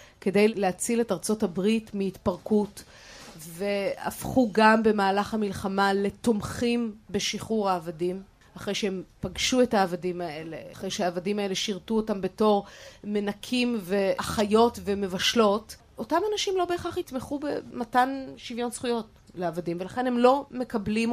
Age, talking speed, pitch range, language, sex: 30-49, 115 wpm, 195-240 Hz, Hebrew, female